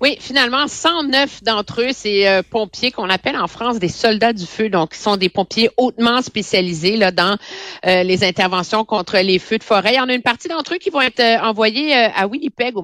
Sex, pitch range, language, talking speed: female, 185-240 Hz, French, 230 wpm